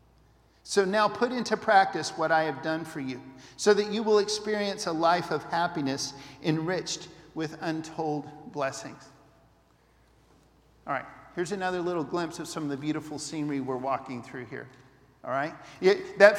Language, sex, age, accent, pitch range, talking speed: English, male, 50-69, American, 160-210 Hz, 155 wpm